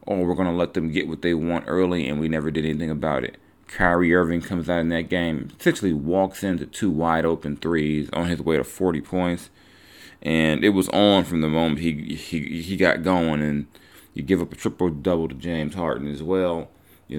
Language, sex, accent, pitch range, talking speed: English, male, American, 80-95 Hz, 210 wpm